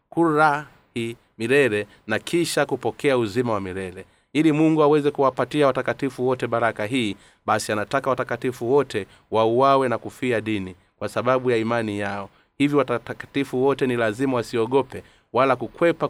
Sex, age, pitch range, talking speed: male, 30-49, 105-135 Hz, 145 wpm